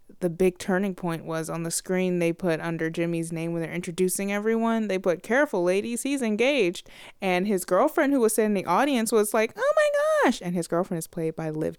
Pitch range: 170-225 Hz